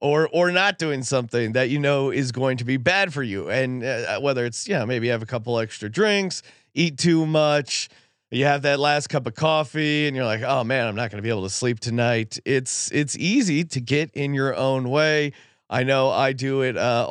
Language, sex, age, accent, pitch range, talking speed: English, male, 30-49, American, 125-170 Hz, 230 wpm